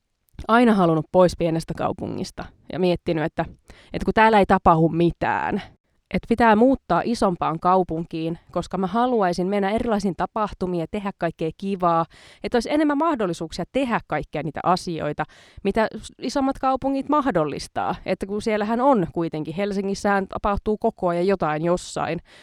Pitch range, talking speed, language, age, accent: 170-220 Hz, 140 wpm, Finnish, 20-39, native